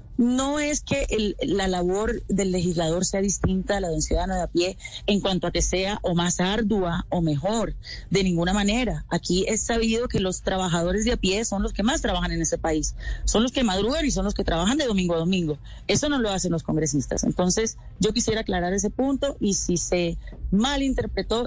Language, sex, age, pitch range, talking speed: Spanish, female, 30-49, 180-230 Hz, 215 wpm